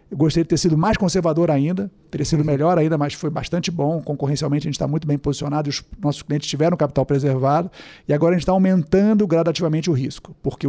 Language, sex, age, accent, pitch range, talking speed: Portuguese, male, 50-69, Brazilian, 150-185 Hz, 220 wpm